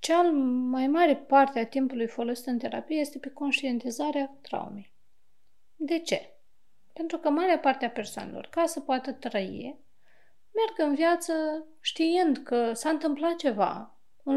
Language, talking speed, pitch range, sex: Romanian, 140 wpm, 235-310 Hz, female